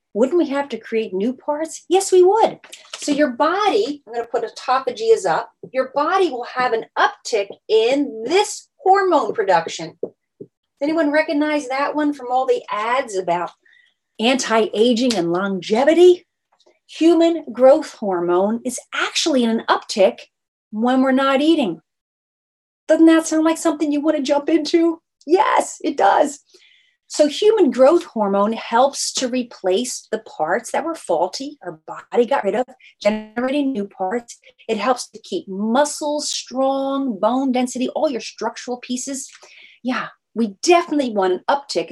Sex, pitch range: female, 225-315 Hz